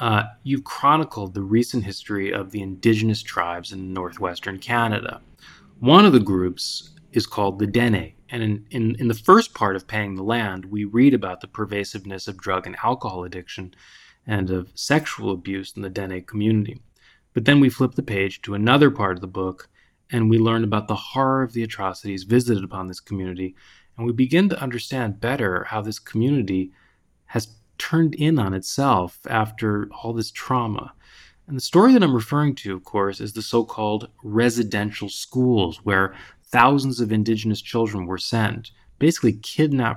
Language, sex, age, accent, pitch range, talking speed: English, male, 30-49, American, 100-120 Hz, 175 wpm